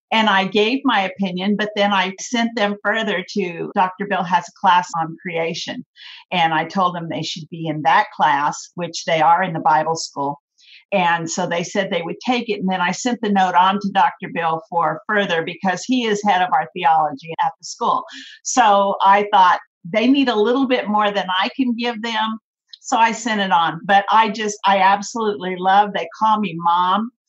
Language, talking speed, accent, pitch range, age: English, 210 wpm, American, 180-220 Hz, 50-69